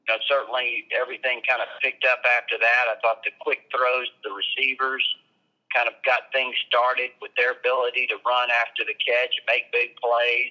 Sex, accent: male, American